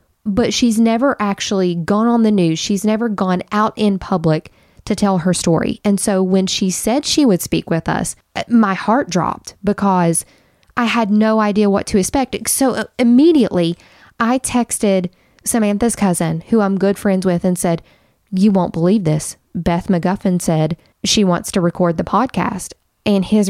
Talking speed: 170 wpm